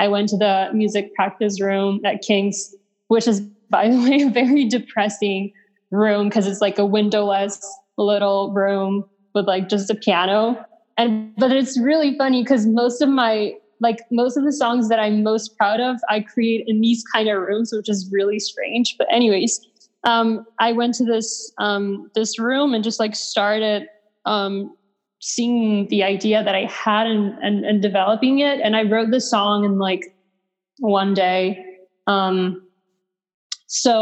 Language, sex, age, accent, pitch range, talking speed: English, female, 20-39, American, 200-225 Hz, 170 wpm